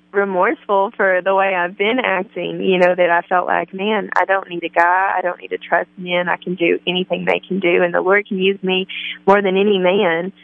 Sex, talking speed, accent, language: female, 240 wpm, American, English